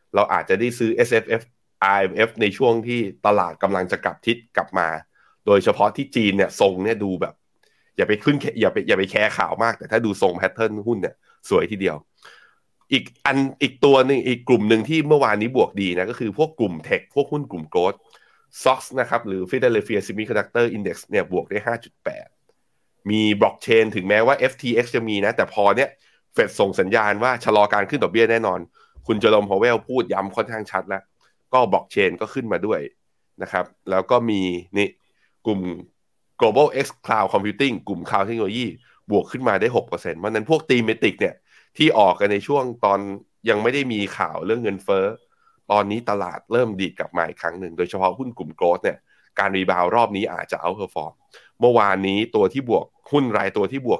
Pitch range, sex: 100-125 Hz, male